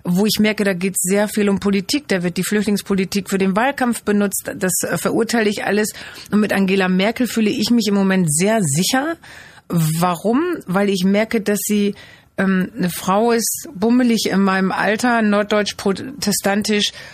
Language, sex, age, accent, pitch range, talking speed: German, female, 40-59, German, 175-210 Hz, 170 wpm